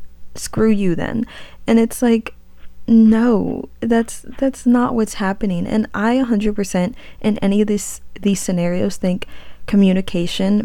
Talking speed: 130 wpm